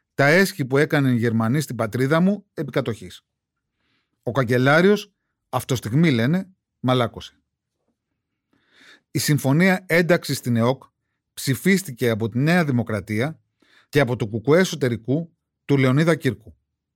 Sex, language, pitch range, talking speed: male, Greek, 120-165 Hz, 120 wpm